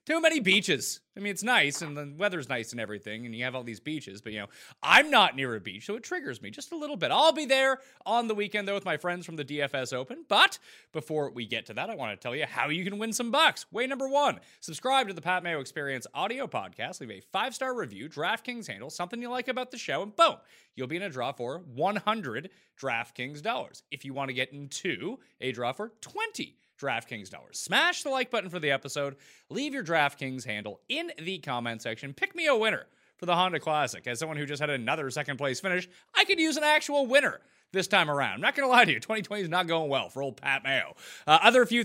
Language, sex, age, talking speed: English, male, 30-49, 245 wpm